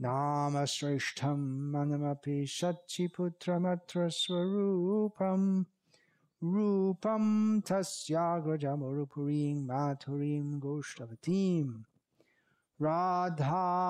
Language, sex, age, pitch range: Russian, male, 50-69, 140-185 Hz